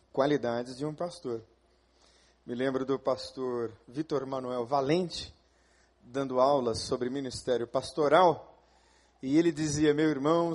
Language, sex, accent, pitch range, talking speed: Portuguese, male, Brazilian, 110-175 Hz, 120 wpm